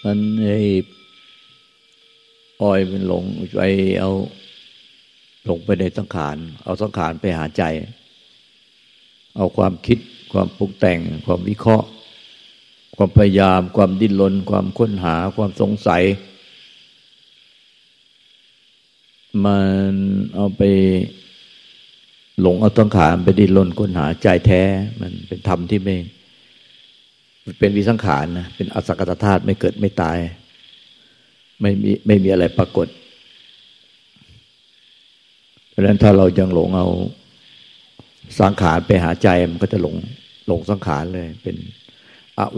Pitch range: 90-105 Hz